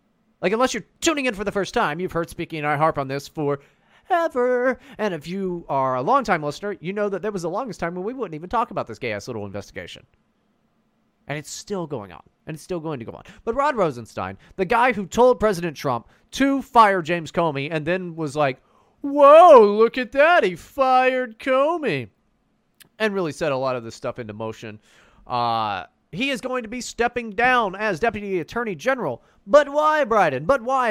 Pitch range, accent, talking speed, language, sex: 155-240 Hz, American, 205 wpm, English, male